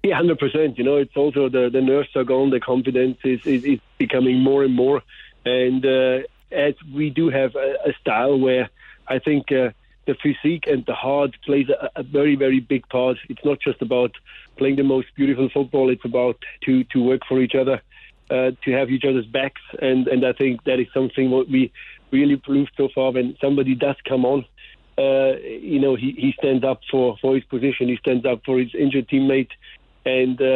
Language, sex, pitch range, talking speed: English, male, 130-145 Hz, 205 wpm